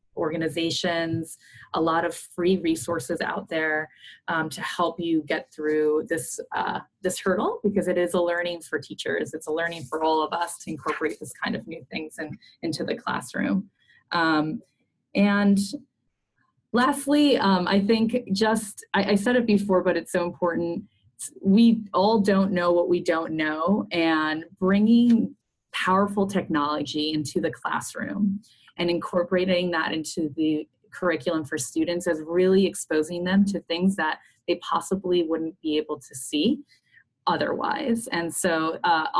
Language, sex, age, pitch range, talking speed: English, female, 20-39, 155-190 Hz, 150 wpm